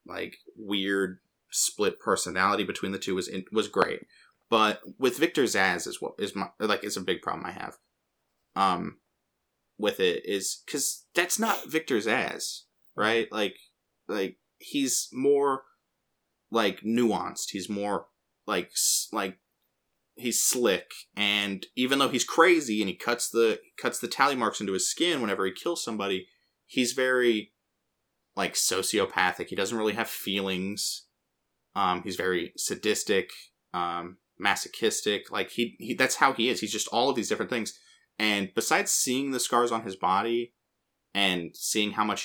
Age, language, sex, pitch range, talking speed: 20-39, English, male, 100-135 Hz, 150 wpm